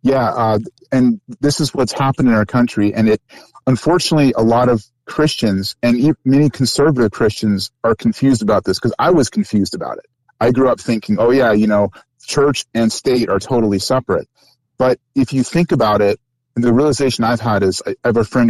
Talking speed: 195 wpm